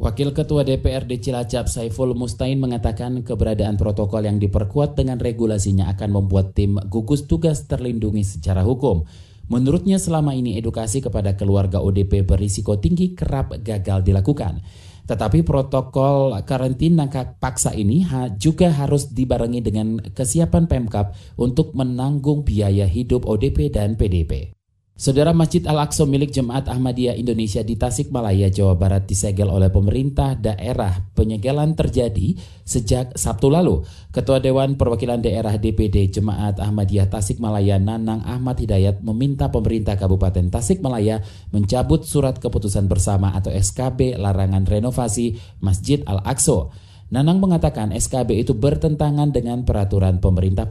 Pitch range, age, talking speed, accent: 100-130 Hz, 30-49, 125 wpm, native